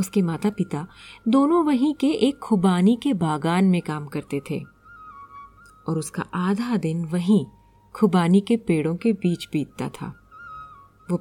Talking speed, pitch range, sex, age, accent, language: 145 wpm, 175-260 Hz, female, 30-49, native, Hindi